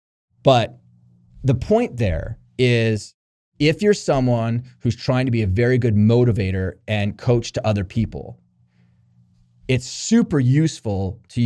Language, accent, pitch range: English, American, 90-120 Hz